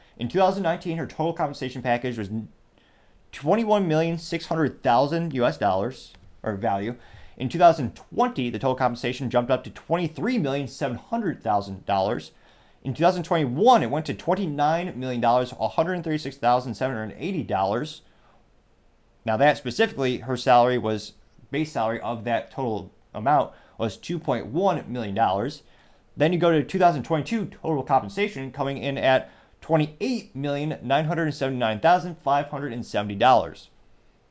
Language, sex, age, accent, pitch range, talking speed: English, male, 30-49, American, 115-155 Hz, 95 wpm